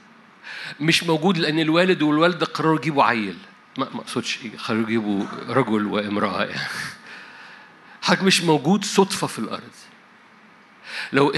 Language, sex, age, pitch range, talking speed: Arabic, male, 50-69, 125-180 Hz, 115 wpm